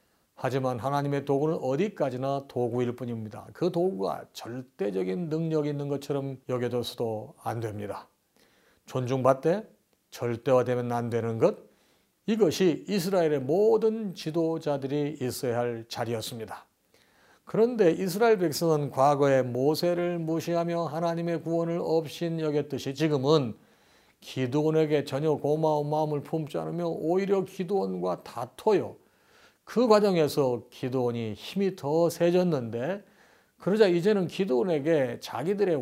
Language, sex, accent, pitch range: Korean, male, native, 125-175 Hz